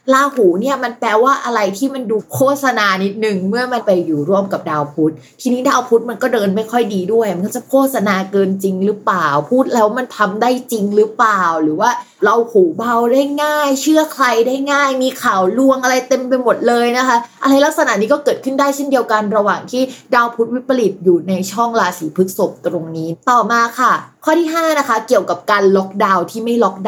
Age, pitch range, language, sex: 20-39, 195-260 Hz, Thai, female